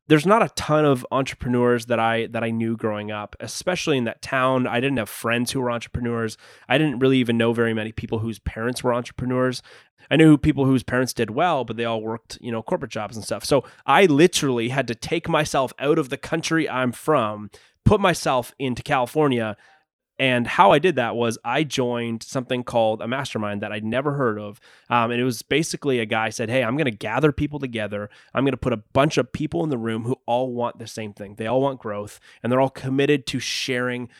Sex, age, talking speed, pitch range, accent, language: male, 20-39, 225 wpm, 115-140 Hz, American, English